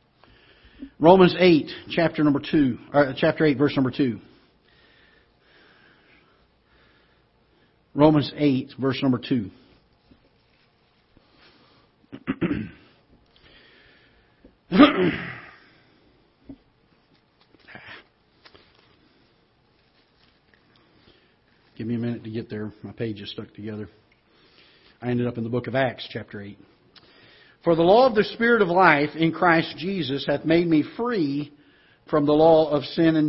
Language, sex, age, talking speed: English, male, 50-69, 105 wpm